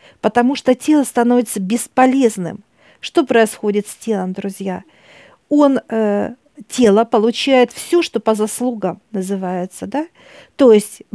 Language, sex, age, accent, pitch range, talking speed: Russian, female, 50-69, native, 210-260 Hz, 120 wpm